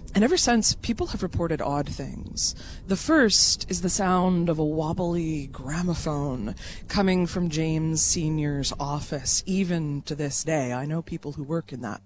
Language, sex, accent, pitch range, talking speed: English, female, American, 140-175 Hz, 165 wpm